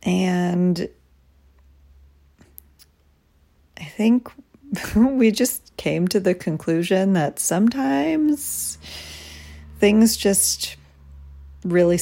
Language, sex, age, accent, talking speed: English, female, 40-59, American, 70 wpm